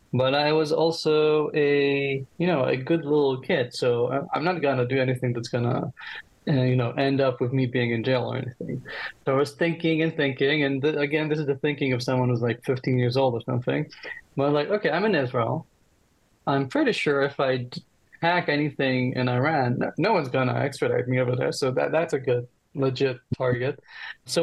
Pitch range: 130-160 Hz